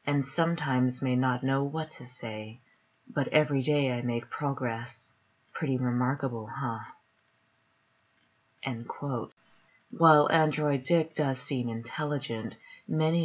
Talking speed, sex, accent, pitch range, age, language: 110 wpm, female, American, 125-150 Hz, 30-49, English